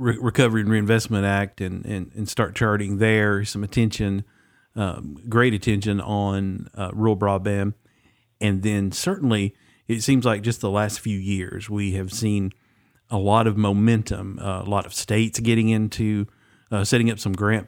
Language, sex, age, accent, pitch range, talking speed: English, male, 50-69, American, 100-115 Hz, 165 wpm